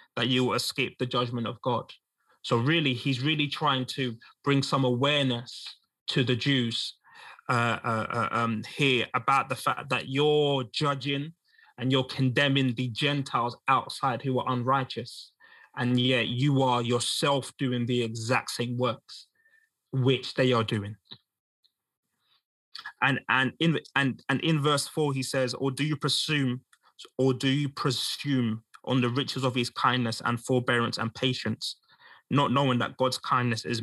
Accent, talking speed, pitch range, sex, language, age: British, 155 wpm, 125-140 Hz, male, English, 20-39